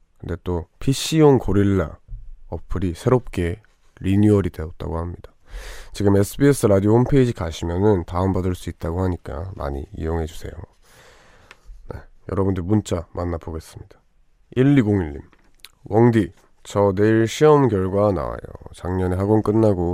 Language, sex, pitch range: Korean, male, 85-105 Hz